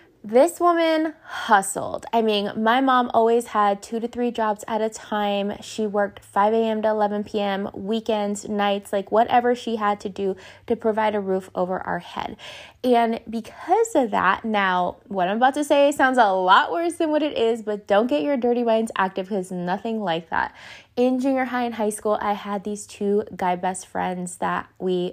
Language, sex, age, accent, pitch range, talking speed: English, female, 20-39, American, 195-250 Hz, 195 wpm